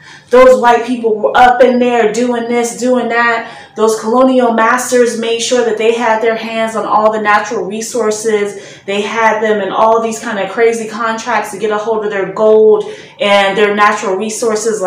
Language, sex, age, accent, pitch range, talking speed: English, female, 30-49, American, 195-250 Hz, 190 wpm